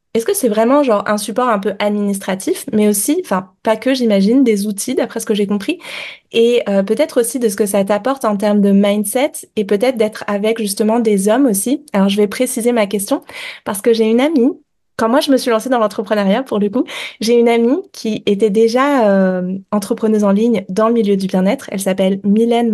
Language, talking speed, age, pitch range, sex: French, 220 wpm, 20-39, 205-255 Hz, female